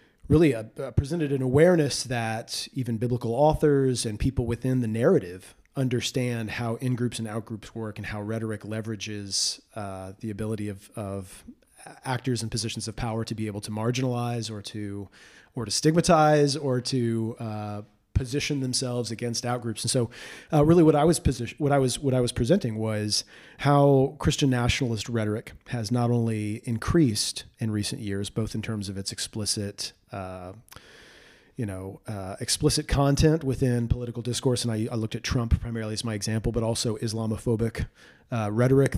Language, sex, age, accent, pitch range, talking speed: English, male, 30-49, American, 110-130 Hz, 165 wpm